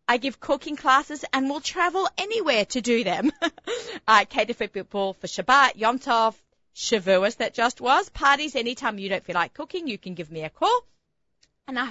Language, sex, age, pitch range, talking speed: English, female, 30-49, 185-255 Hz, 190 wpm